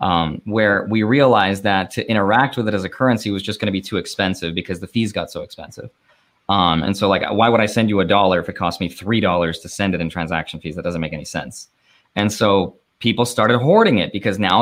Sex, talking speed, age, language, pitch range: male, 245 wpm, 20-39, English, 95-120 Hz